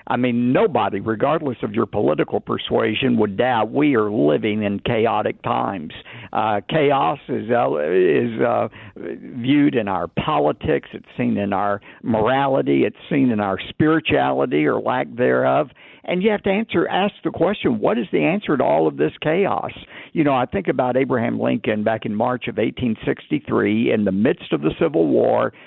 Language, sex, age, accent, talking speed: English, male, 60-79, American, 175 wpm